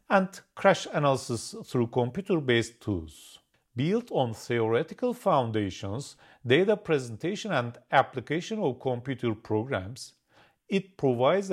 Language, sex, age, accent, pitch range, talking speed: English, male, 40-59, Turkish, 115-165 Hz, 100 wpm